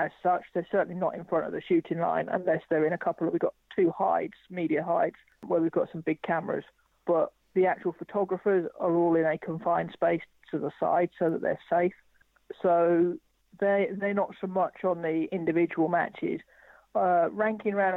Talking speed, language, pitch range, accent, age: 195 wpm, English, 165-185 Hz, British, 40-59